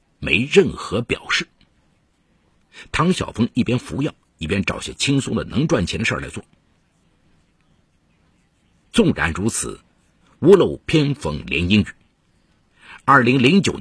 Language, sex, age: Chinese, male, 50-69